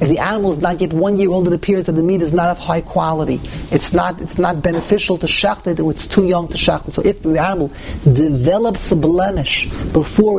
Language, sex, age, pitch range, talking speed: English, male, 40-59, 160-190 Hz, 230 wpm